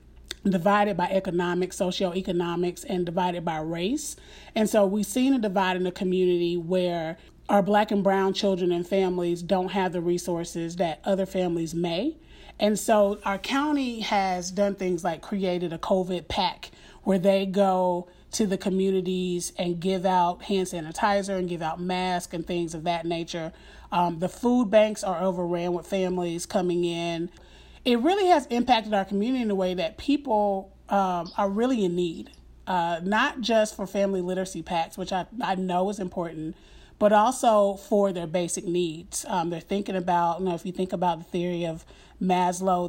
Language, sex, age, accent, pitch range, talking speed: English, male, 30-49, American, 175-205 Hz, 170 wpm